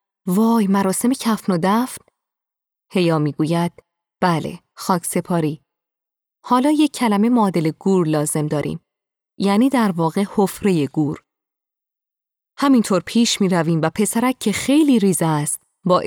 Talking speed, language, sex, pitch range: 125 wpm, Persian, female, 165-205 Hz